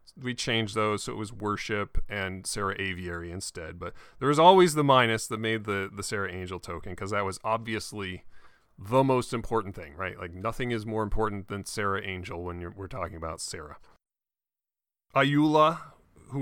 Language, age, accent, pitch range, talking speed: English, 30-49, American, 95-130 Hz, 180 wpm